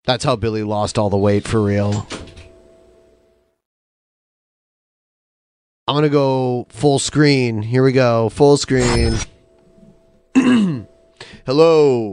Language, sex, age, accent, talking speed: English, male, 30-49, American, 105 wpm